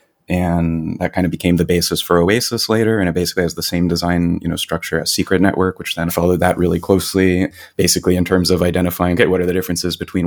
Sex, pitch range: male, 85-95 Hz